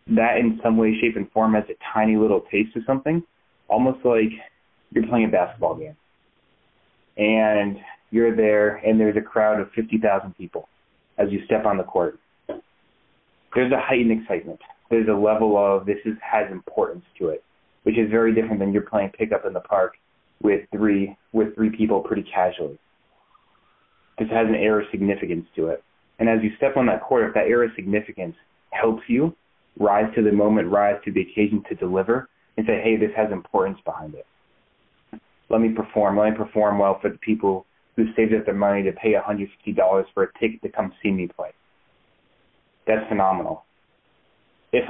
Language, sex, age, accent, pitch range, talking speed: English, male, 30-49, American, 100-110 Hz, 180 wpm